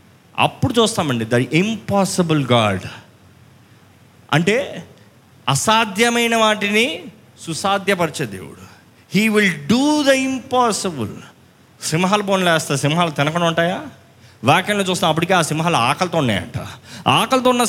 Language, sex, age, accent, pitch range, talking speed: Telugu, male, 20-39, native, 150-225 Hz, 95 wpm